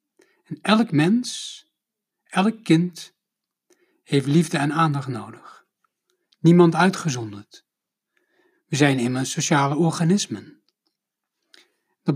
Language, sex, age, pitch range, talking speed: Dutch, male, 60-79, 160-255 Hz, 90 wpm